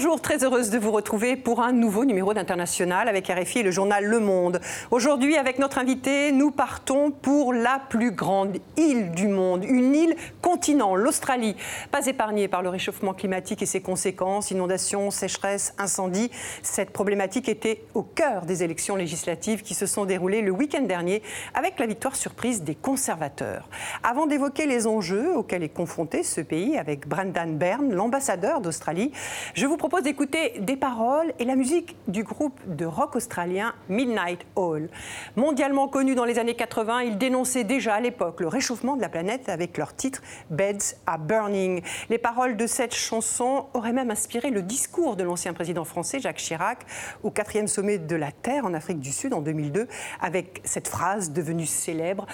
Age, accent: 50-69, French